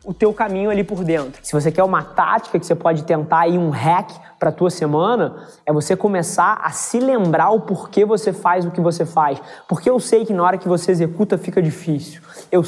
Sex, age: male, 20-39